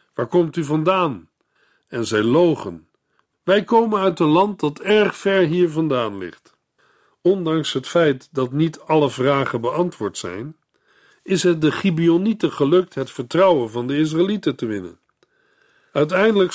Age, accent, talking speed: 50-69, Dutch, 145 wpm